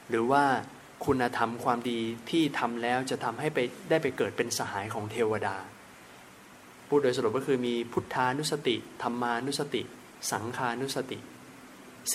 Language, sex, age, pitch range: Thai, male, 20-39, 110-135 Hz